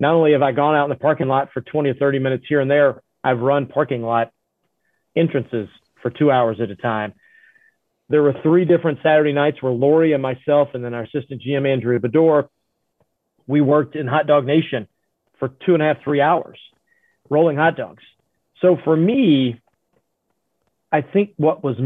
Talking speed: 190 wpm